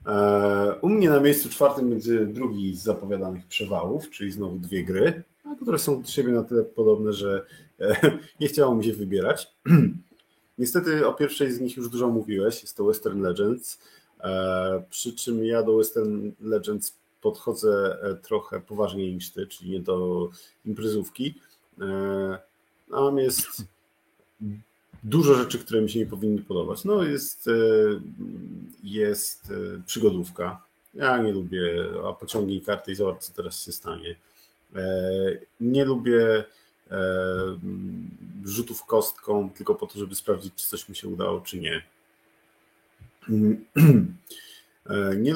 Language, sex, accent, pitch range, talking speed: Polish, male, native, 95-140 Hz, 130 wpm